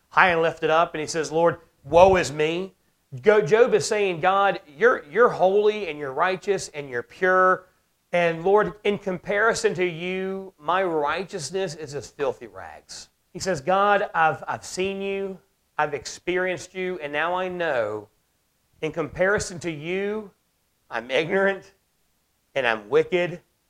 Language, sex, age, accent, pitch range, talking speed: English, male, 40-59, American, 160-195 Hz, 150 wpm